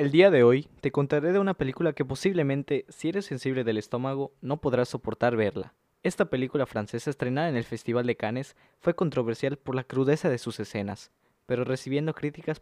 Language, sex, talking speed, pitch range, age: Spanish, male, 190 wpm, 115-150 Hz, 20-39